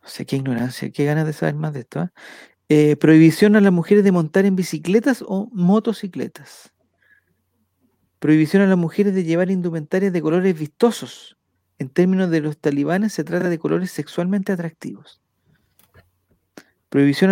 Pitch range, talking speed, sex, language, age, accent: 150-195 Hz, 155 wpm, male, Spanish, 40-59, Argentinian